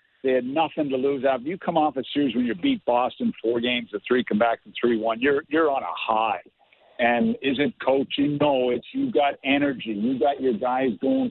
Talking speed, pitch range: 230 wpm, 125-170 Hz